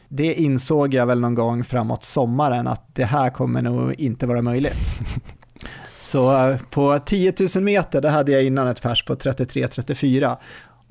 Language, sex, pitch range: Swedish, male, 120-145 Hz